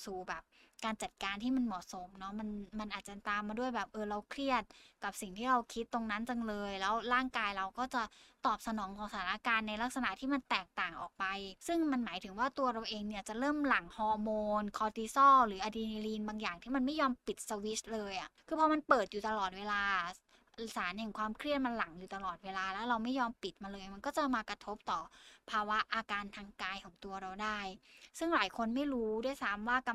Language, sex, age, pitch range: Thai, female, 10-29, 205-255 Hz